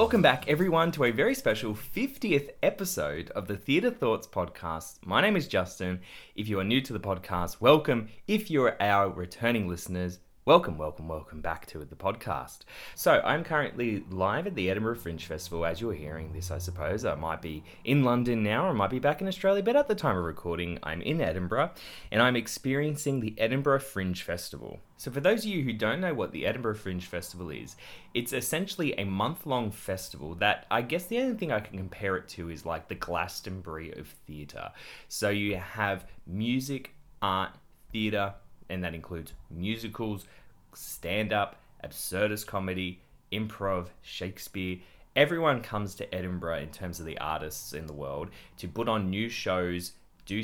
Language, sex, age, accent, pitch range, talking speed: English, male, 20-39, Australian, 85-115 Hz, 180 wpm